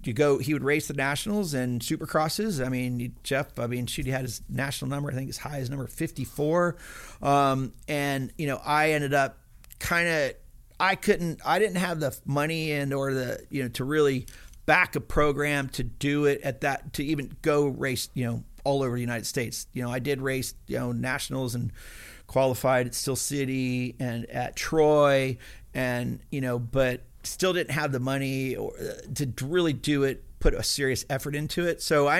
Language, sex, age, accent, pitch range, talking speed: English, male, 40-59, American, 125-150 Hz, 200 wpm